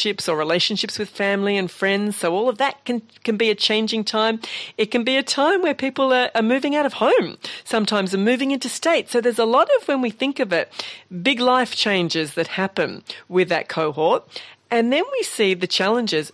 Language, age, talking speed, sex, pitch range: English, 40-59, 215 wpm, female, 180-240 Hz